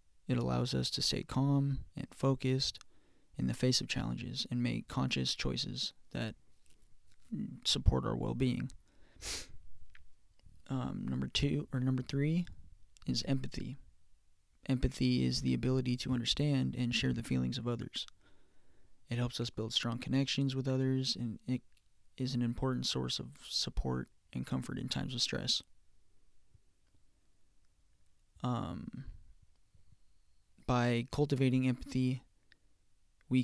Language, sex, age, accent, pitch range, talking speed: English, male, 20-39, American, 85-130 Hz, 120 wpm